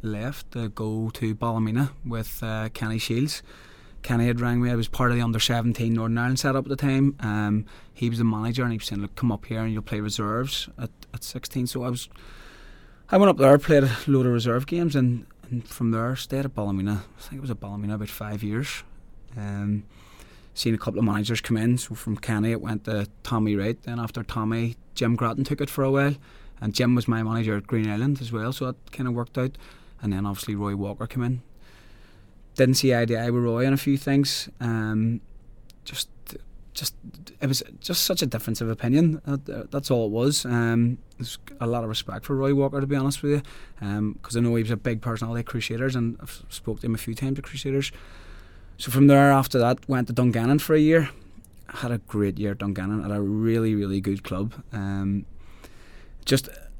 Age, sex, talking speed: 20-39, male, 220 wpm